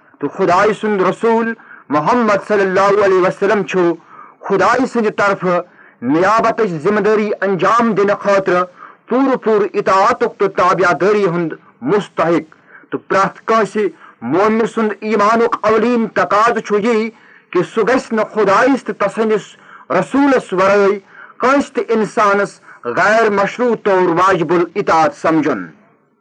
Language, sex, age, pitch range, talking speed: Urdu, male, 40-59, 190-225 Hz, 110 wpm